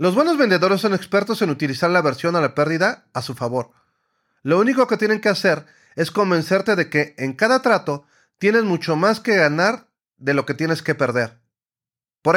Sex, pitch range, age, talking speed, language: male, 145-215 Hz, 40-59, 195 wpm, Spanish